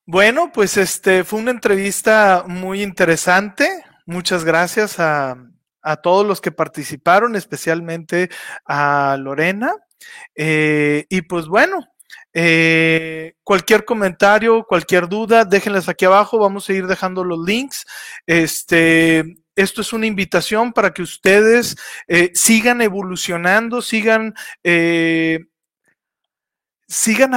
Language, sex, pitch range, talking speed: Spanish, male, 170-220 Hz, 110 wpm